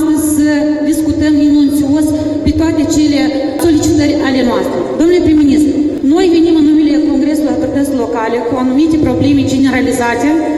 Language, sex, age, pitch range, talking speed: Romanian, female, 30-49, 280-310 Hz, 125 wpm